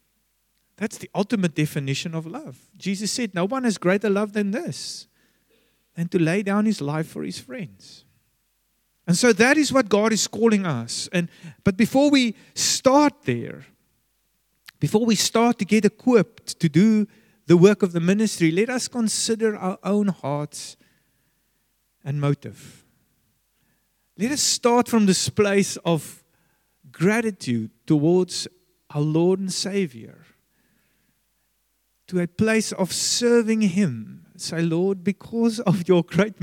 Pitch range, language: 155-210 Hz, English